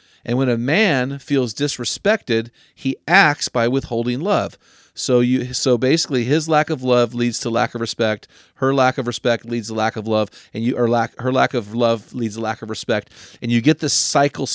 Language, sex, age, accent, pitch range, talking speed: English, male, 40-59, American, 110-130 Hz, 210 wpm